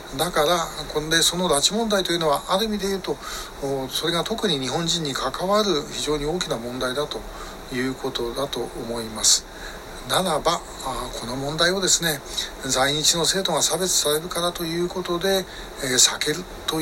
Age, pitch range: 60-79, 140-180 Hz